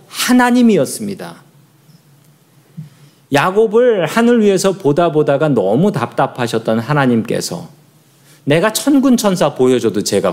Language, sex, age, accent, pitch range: Korean, male, 40-59, native, 140-190 Hz